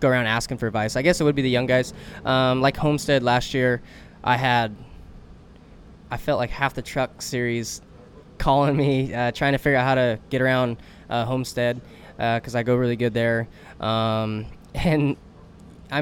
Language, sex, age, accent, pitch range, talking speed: English, male, 10-29, American, 115-135 Hz, 185 wpm